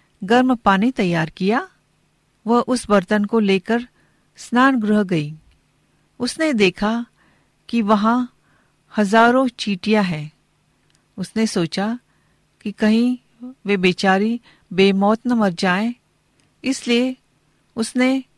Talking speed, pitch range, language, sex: 100 wpm, 185-240 Hz, Hindi, female